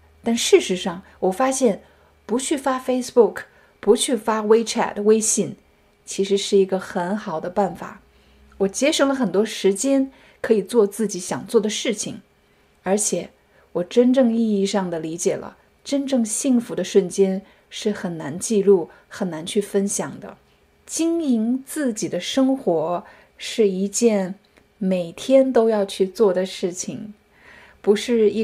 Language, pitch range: Chinese, 190-250 Hz